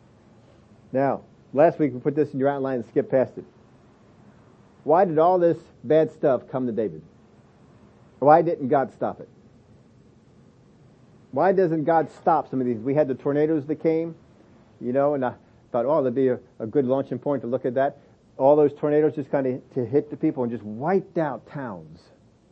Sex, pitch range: male, 115-145 Hz